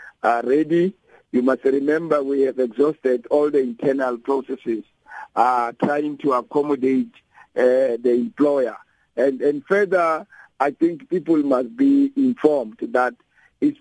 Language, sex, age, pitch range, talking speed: English, male, 50-69, 130-190 Hz, 130 wpm